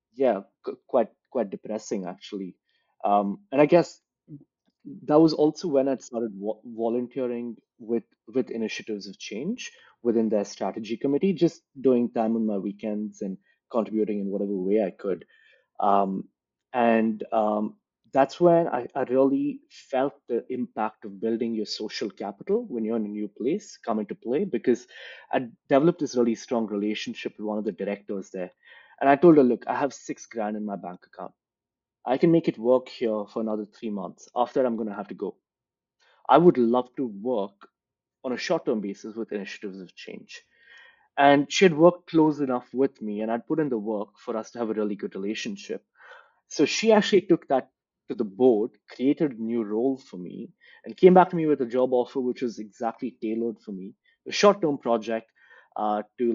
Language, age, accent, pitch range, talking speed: English, 20-39, Indian, 105-140 Hz, 185 wpm